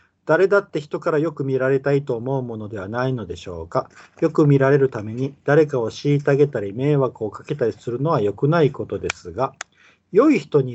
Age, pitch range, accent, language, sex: 40-59, 115-155 Hz, native, Japanese, male